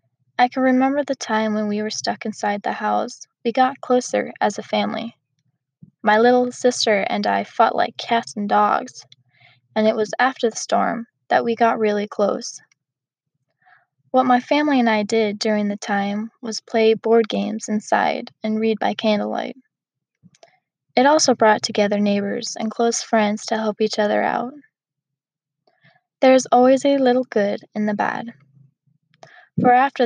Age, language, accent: 10-29, English, American